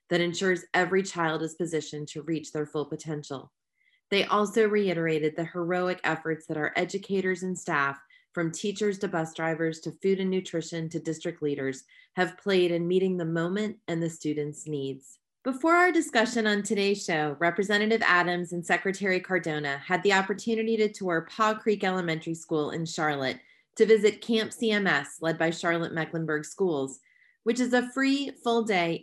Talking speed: 165 wpm